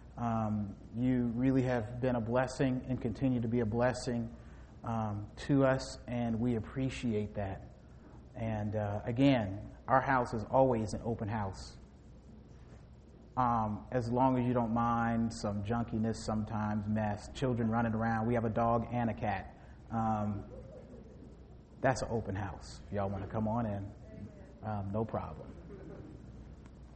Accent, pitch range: American, 105-130 Hz